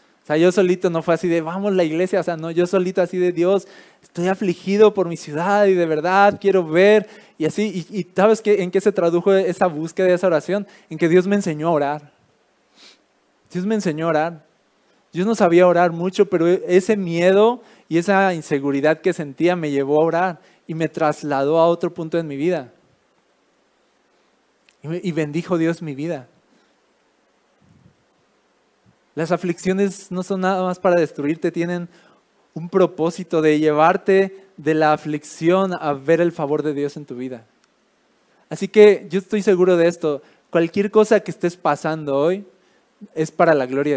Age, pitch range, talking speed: 20-39, 155-190 Hz, 170 wpm